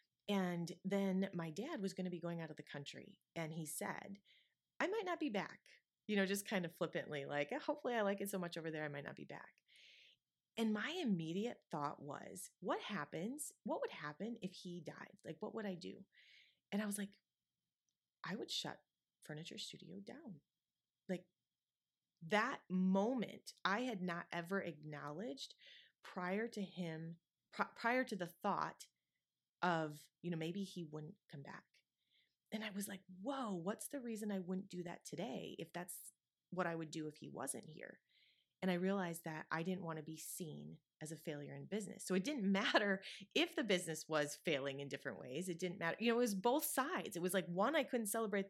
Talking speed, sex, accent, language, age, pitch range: 195 wpm, female, American, English, 30-49, 165-210 Hz